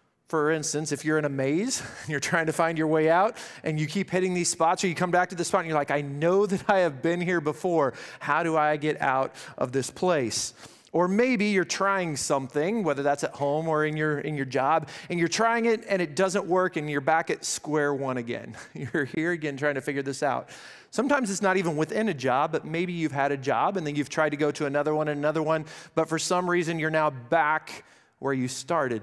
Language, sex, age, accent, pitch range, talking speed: English, male, 30-49, American, 140-180 Hz, 250 wpm